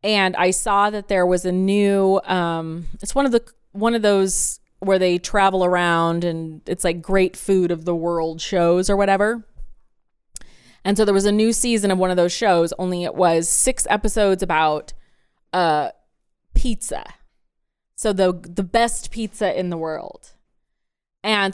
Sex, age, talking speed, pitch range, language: female, 20-39, 165 wpm, 180-215 Hz, English